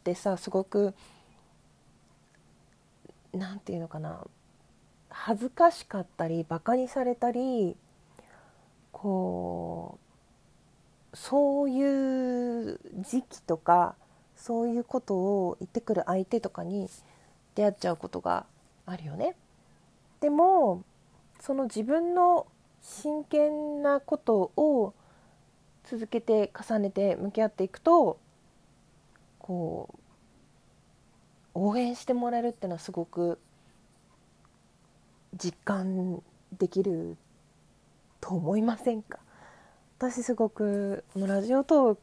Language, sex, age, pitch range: Japanese, female, 40-59, 175-245 Hz